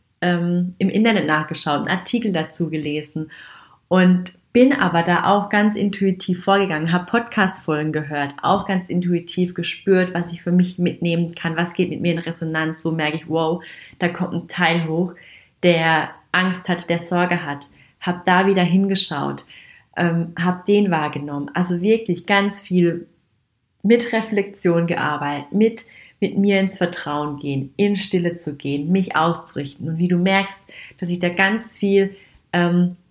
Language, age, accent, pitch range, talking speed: German, 30-49, German, 160-190 Hz, 155 wpm